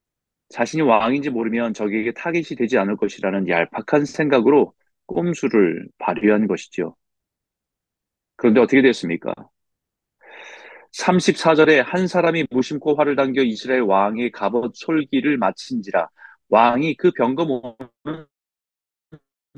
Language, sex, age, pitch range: Korean, male, 30-49, 115-170 Hz